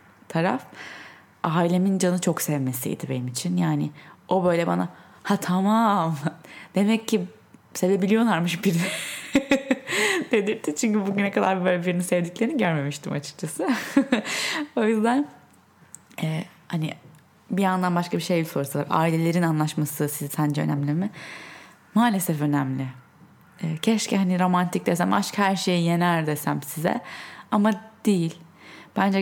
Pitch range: 160-200 Hz